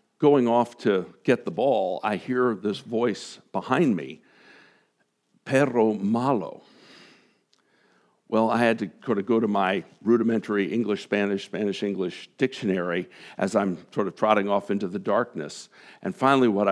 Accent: American